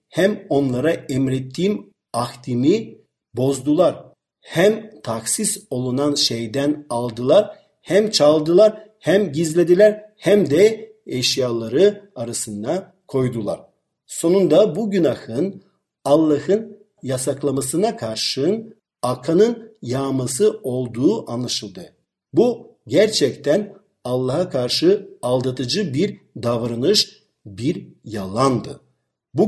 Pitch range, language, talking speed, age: 125-195 Hz, Turkish, 80 wpm, 50-69